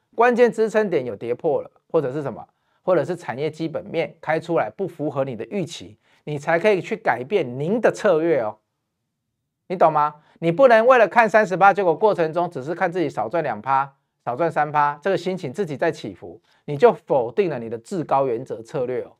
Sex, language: male, Chinese